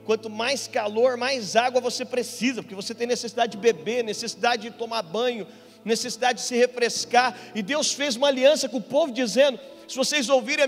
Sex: male